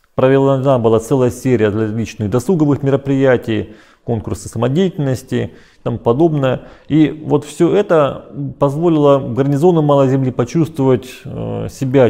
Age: 30-49